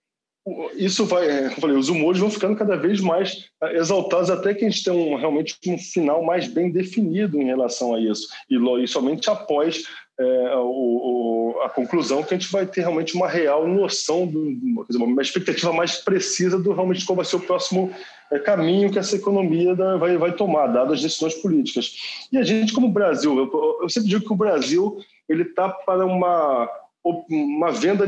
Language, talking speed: Portuguese, 195 wpm